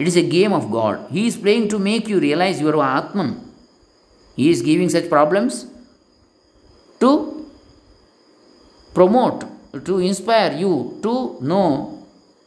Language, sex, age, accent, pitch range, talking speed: Kannada, male, 50-69, native, 125-180 Hz, 130 wpm